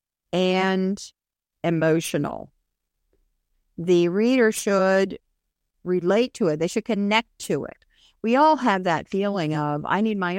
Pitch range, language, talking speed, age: 175-235 Hz, English, 125 wpm, 50-69